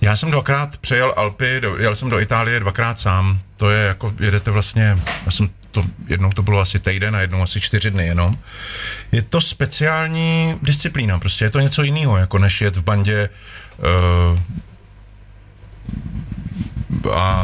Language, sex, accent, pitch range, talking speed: Czech, male, native, 95-110 Hz, 160 wpm